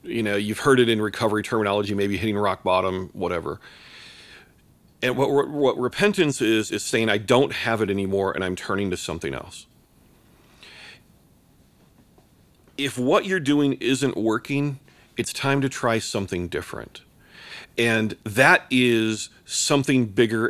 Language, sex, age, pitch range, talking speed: English, male, 40-59, 105-135 Hz, 140 wpm